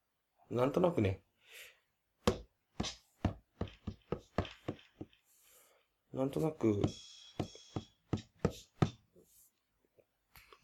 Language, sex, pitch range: Japanese, male, 105-135 Hz